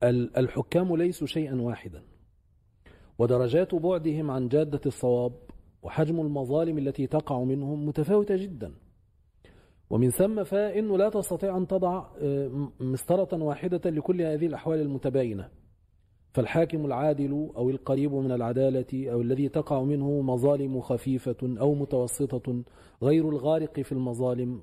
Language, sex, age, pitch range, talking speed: Arabic, male, 40-59, 130-175 Hz, 115 wpm